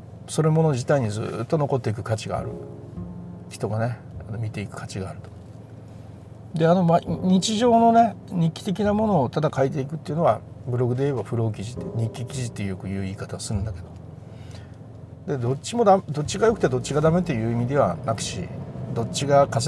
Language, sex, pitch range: Japanese, male, 115-155 Hz